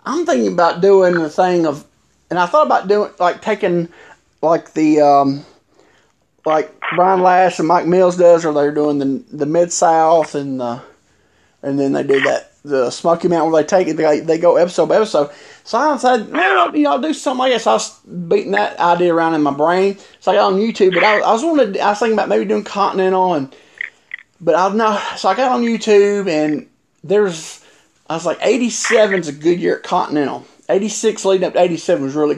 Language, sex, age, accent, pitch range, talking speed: English, male, 30-49, American, 150-210 Hz, 220 wpm